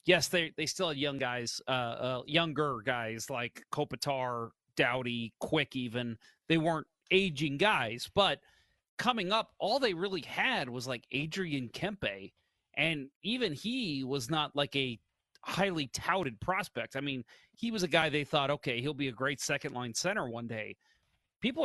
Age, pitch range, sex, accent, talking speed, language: 30-49, 125-160 Hz, male, American, 165 wpm, English